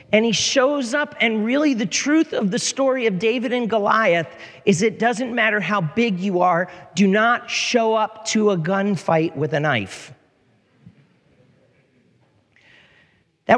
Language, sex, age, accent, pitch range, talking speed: English, male, 40-59, American, 150-205 Hz, 150 wpm